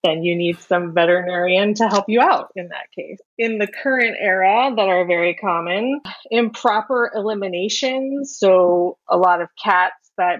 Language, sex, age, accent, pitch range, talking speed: English, female, 30-49, American, 175-215 Hz, 160 wpm